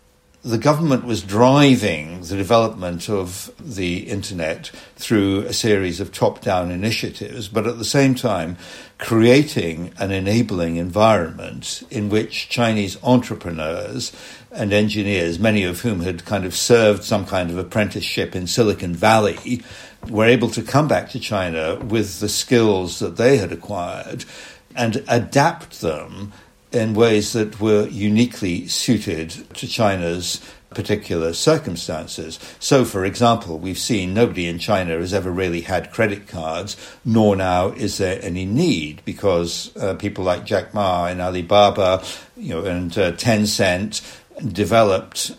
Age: 60-79